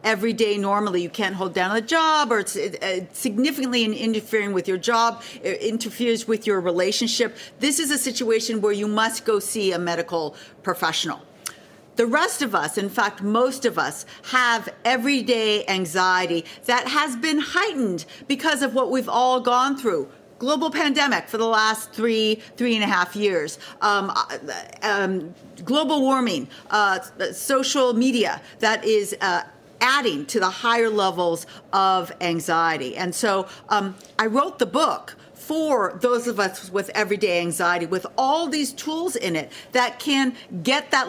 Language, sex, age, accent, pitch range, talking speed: English, female, 50-69, American, 195-260 Hz, 160 wpm